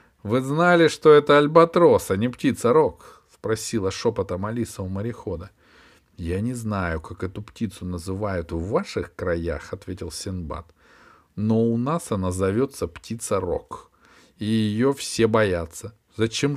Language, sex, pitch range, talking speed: Russian, male, 90-135 Hz, 145 wpm